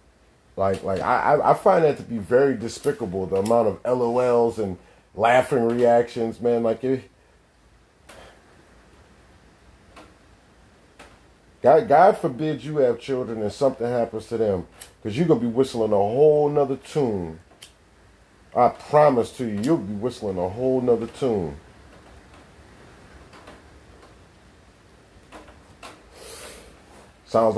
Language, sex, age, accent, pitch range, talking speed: English, male, 40-59, American, 95-130 Hz, 115 wpm